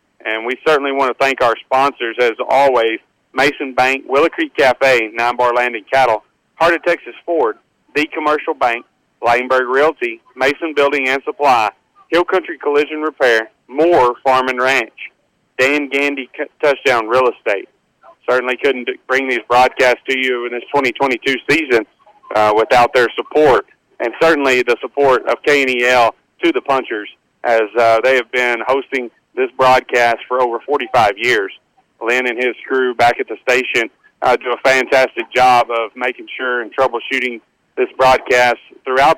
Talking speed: 160 wpm